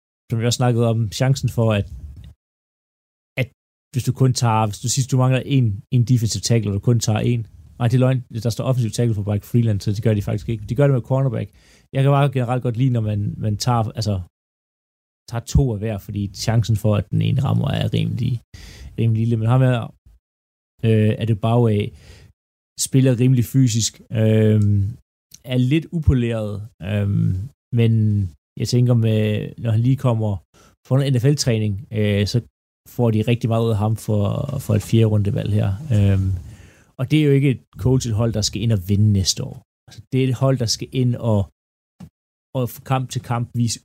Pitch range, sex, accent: 105-125 Hz, male, native